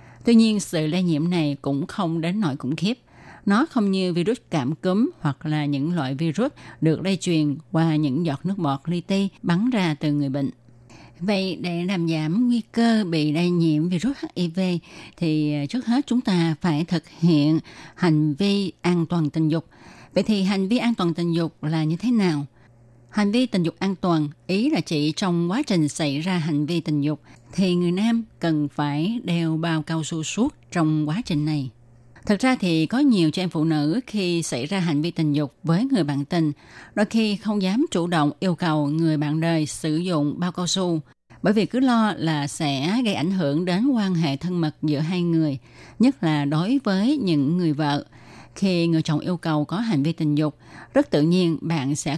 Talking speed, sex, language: 210 wpm, female, Vietnamese